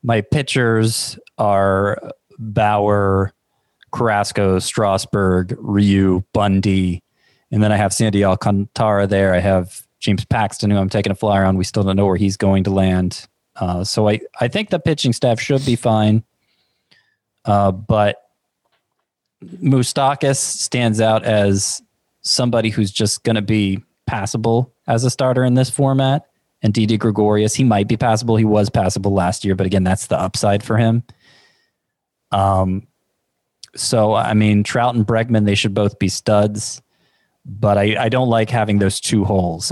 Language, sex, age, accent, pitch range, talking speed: English, male, 20-39, American, 100-115 Hz, 155 wpm